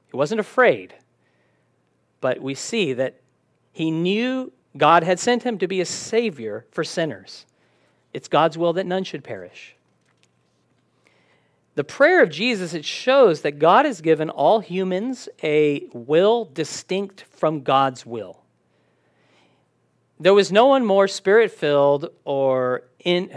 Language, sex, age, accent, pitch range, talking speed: English, male, 40-59, American, 145-205 Hz, 135 wpm